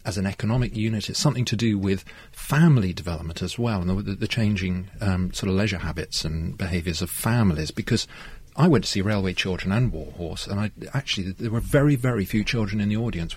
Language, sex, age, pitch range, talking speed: English, male, 40-59, 95-120 Hz, 215 wpm